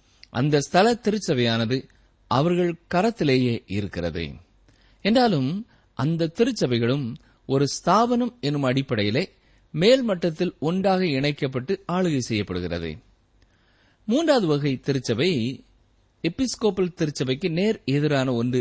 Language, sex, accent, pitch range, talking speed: Tamil, male, native, 110-185 Hz, 85 wpm